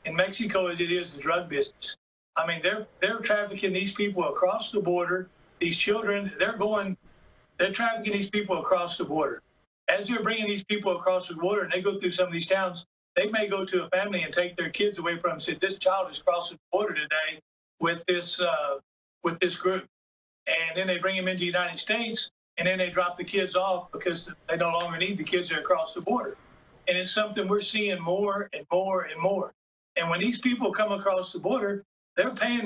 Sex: male